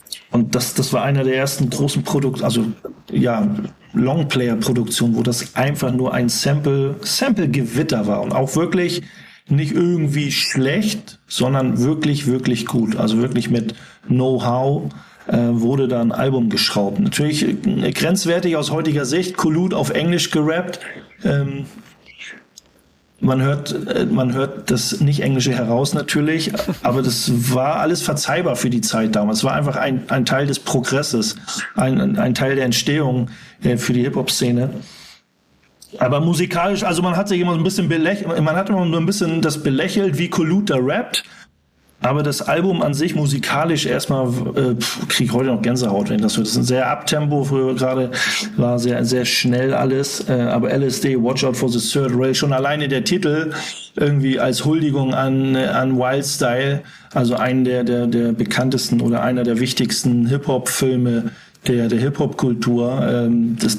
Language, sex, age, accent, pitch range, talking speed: German, male, 40-59, German, 120-155 Hz, 165 wpm